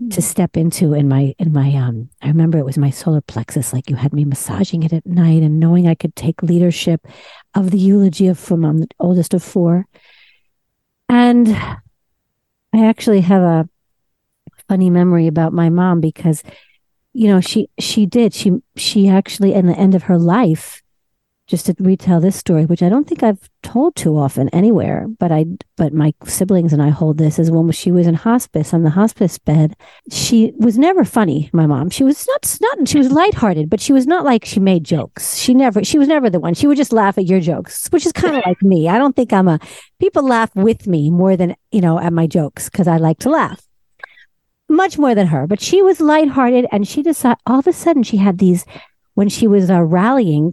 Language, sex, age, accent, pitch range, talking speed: English, female, 50-69, American, 165-225 Hz, 215 wpm